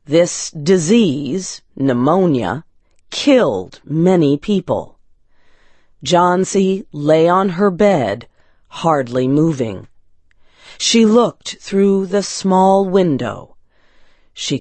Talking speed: 80 wpm